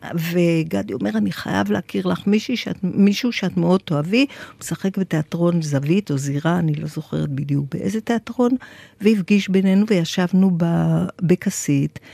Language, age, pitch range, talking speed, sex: Hebrew, 50-69, 165-205 Hz, 140 wpm, female